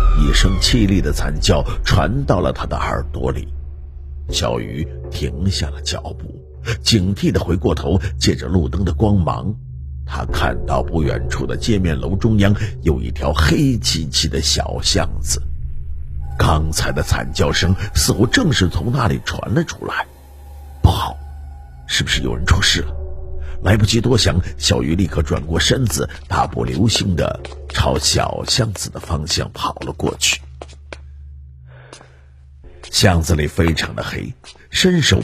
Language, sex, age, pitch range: Chinese, male, 50-69, 70-95 Hz